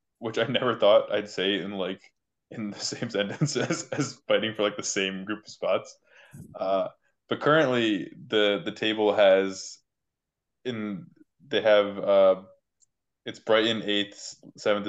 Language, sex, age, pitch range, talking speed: English, male, 20-39, 95-115 Hz, 150 wpm